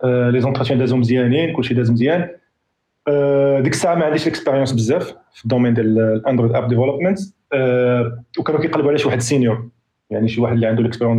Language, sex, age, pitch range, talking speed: Arabic, male, 40-59, 120-160 Hz, 145 wpm